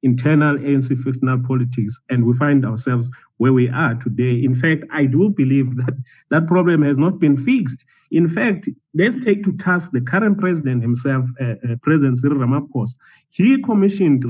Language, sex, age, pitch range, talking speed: English, male, 30-49, 125-170 Hz, 170 wpm